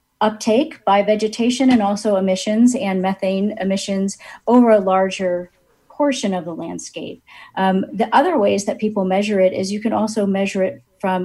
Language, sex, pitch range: English, female, 175-205 Hz